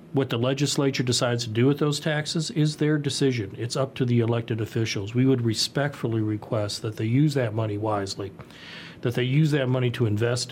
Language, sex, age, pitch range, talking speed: English, male, 40-59, 115-145 Hz, 200 wpm